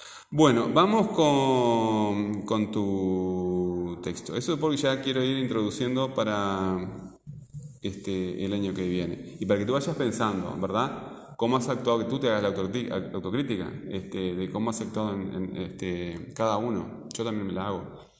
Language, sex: Spanish, male